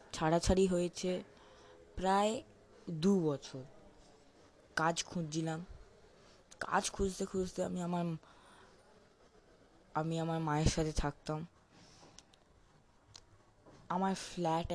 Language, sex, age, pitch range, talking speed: Bengali, female, 20-39, 135-170 Hz, 45 wpm